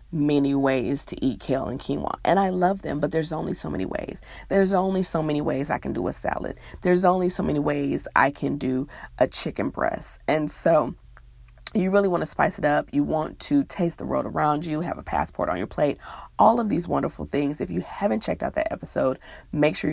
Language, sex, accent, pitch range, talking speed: English, female, American, 135-175 Hz, 225 wpm